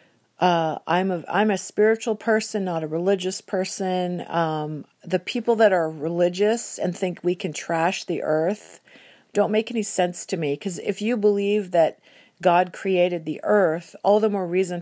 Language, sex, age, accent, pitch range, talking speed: English, female, 40-59, American, 165-195 Hz, 175 wpm